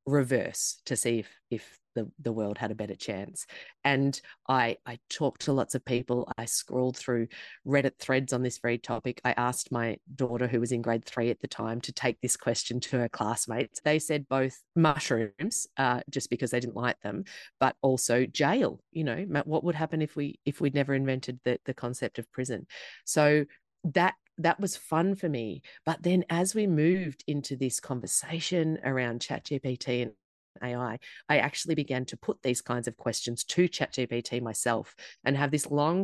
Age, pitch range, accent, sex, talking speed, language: 30-49, 120-150 Hz, Australian, female, 190 wpm, English